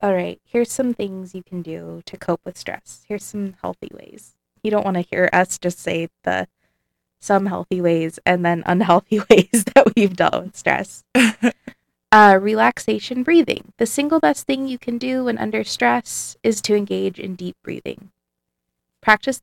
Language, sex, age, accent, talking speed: English, female, 20-39, American, 175 wpm